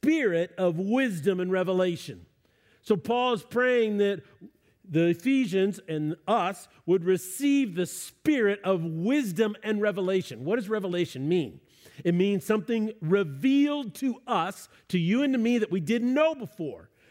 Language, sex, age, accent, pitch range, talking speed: English, male, 40-59, American, 180-235 Hz, 145 wpm